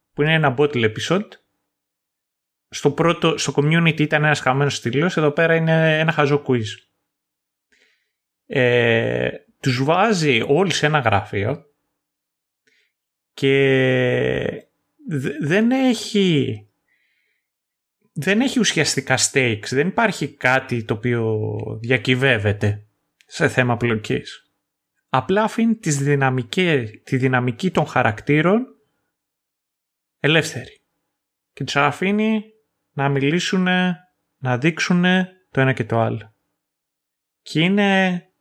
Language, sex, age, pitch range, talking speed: Greek, male, 30-49, 130-170 Hz, 100 wpm